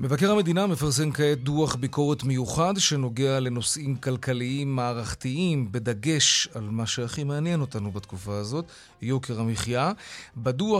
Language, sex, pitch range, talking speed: Hebrew, male, 120-160 Hz, 120 wpm